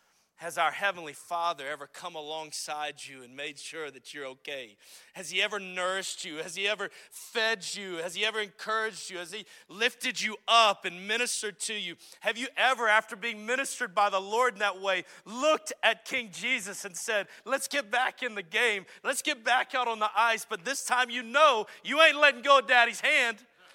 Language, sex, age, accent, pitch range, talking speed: English, male, 40-59, American, 170-245 Hz, 205 wpm